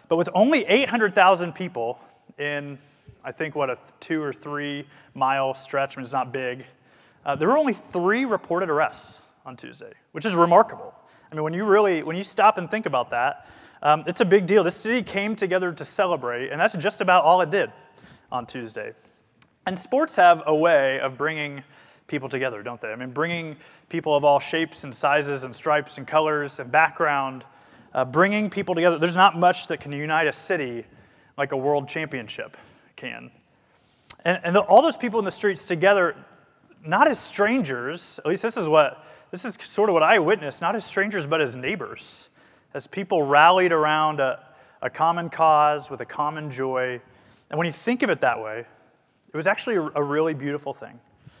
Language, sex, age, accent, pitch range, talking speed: English, male, 30-49, American, 140-185 Hz, 195 wpm